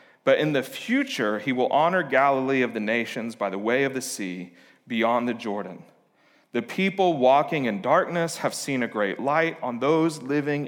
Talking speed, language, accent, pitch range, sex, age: 185 wpm, English, American, 130-170 Hz, male, 40-59